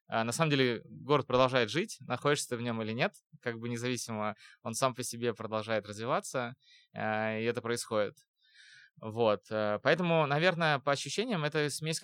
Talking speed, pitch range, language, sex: 150 wpm, 110-135 Hz, Russian, male